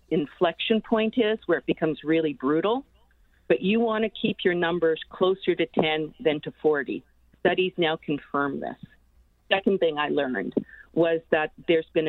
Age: 40-59